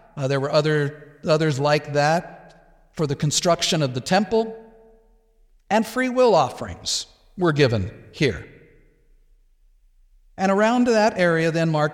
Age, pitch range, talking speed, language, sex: 50-69, 125-160 Hz, 130 wpm, English, male